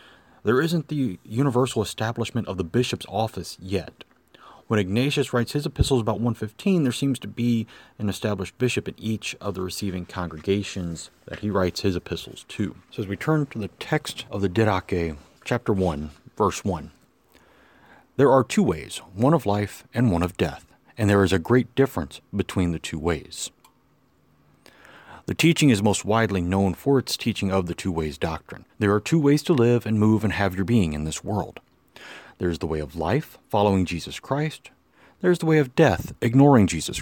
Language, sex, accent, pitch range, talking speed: English, male, American, 95-125 Hz, 190 wpm